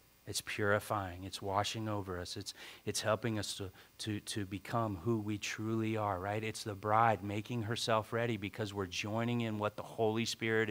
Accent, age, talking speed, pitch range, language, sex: American, 40-59, 185 wpm, 100-115 Hz, English, male